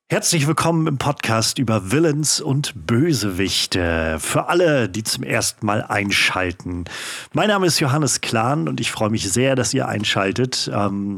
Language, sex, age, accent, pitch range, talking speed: German, male, 40-59, German, 100-135 Hz, 155 wpm